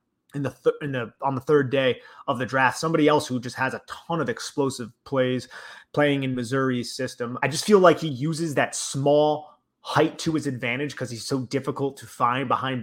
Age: 30-49